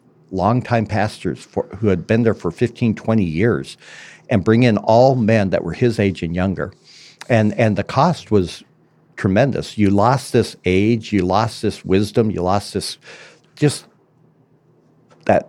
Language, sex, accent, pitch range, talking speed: English, male, American, 95-120 Hz, 160 wpm